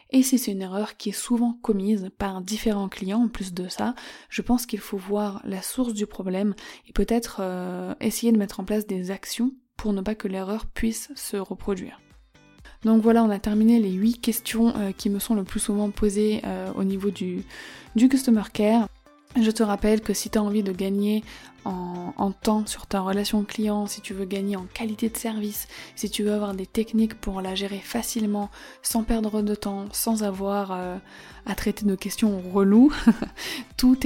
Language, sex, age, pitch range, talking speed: French, female, 20-39, 195-225 Hz, 200 wpm